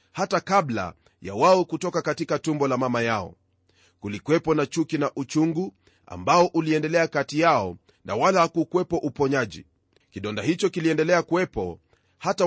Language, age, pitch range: Swahili, 30-49, 120-165 Hz